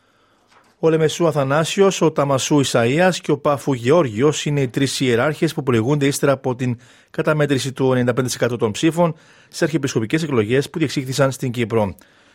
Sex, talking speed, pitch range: male, 150 wpm, 120-150 Hz